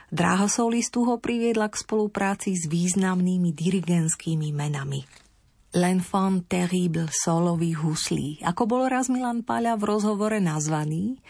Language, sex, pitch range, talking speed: Slovak, female, 165-195 Hz, 110 wpm